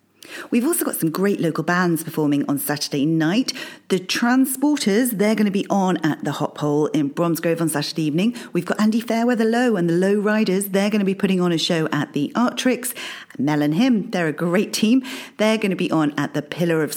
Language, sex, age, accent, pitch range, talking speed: English, female, 40-59, British, 150-225 Hz, 225 wpm